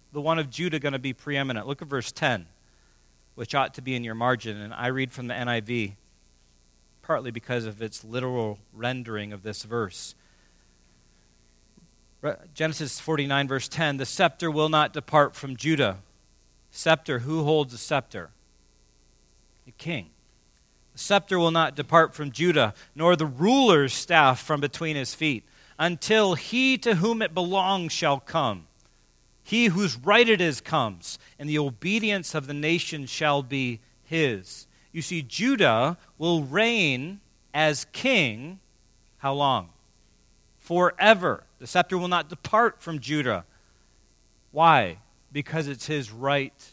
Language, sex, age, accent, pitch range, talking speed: English, male, 40-59, American, 115-165 Hz, 145 wpm